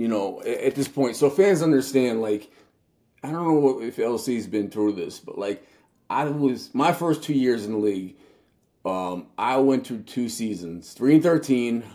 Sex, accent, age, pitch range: male, American, 30-49, 105-135 Hz